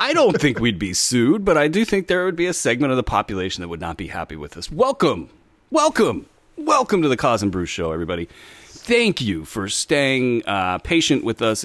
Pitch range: 85-120 Hz